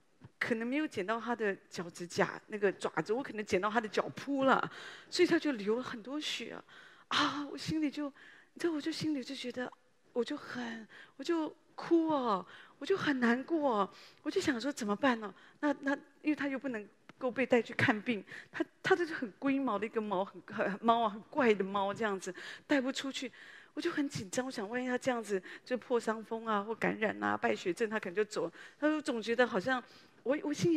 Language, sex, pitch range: Chinese, female, 190-255 Hz